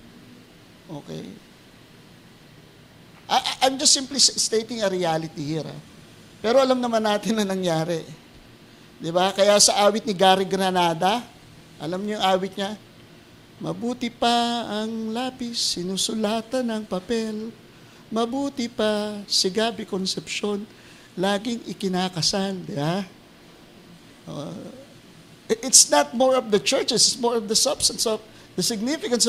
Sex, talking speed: male, 120 wpm